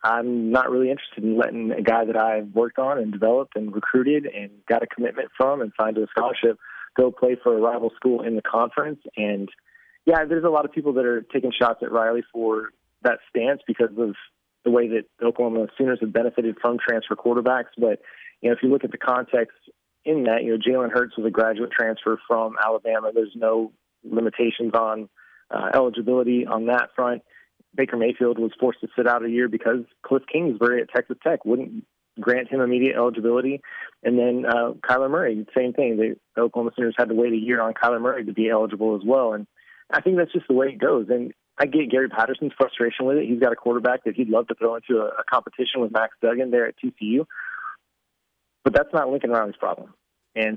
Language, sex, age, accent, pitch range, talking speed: English, male, 30-49, American, 115-125 Hz, 210 wpm